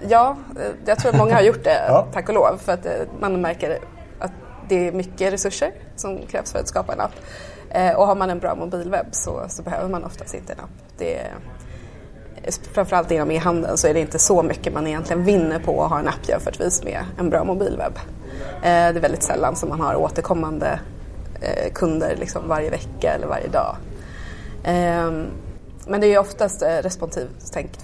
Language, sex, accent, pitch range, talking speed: Swedish, female, native, 165-195 Hz, 185 wpm